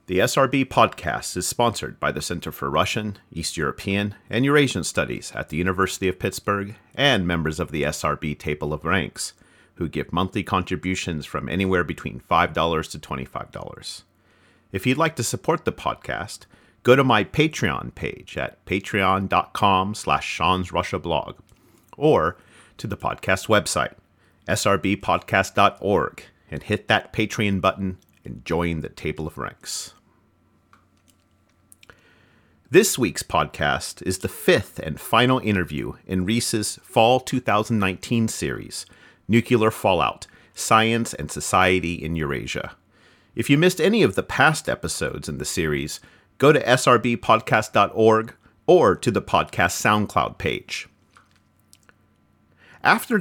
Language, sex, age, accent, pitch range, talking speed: English, male, 40-59, American, 85-115 Hz, 130 wpm